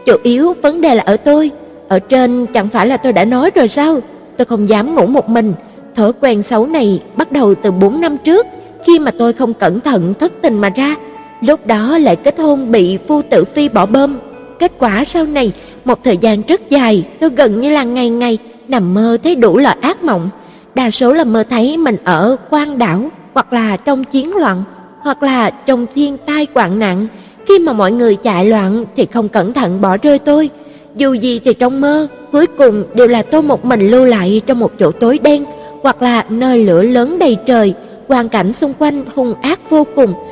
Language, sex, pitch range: Vietnamese, female, 220-290 Hz